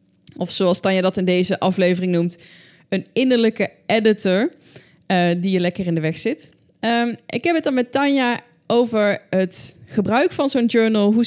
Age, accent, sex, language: 20-39, Dutch, female, Dutch